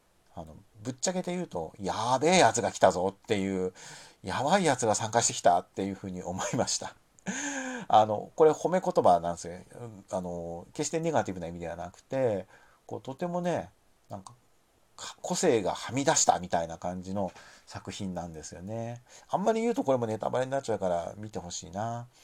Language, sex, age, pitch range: Japanese, male, 50-69, 90-130 Hz